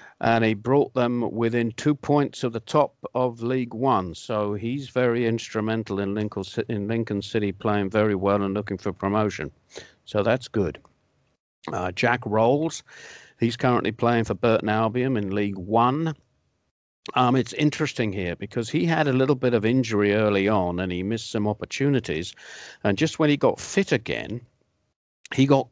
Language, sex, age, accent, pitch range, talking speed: English, male, 50-69, British, 100-125 Hz, 165 wpm